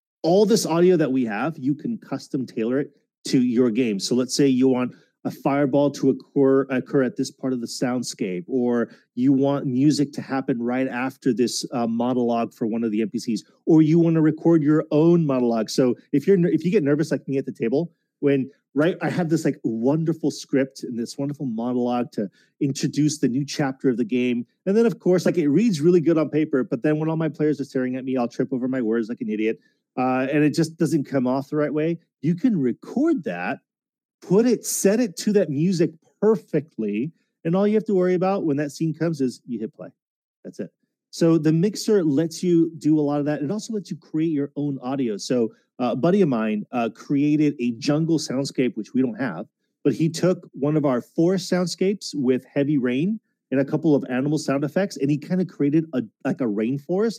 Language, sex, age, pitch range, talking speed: English, male, 30-49, 130-165 Hz, 225 wpm